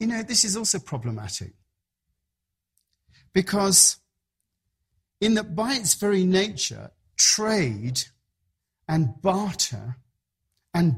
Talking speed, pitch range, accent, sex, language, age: 95 wpm, 110-180 Hz, British, male, English, 40-59